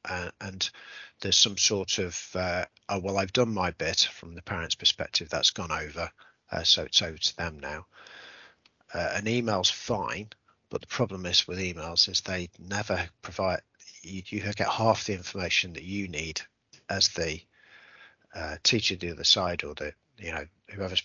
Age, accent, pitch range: 50-69, British, 85-100 Hz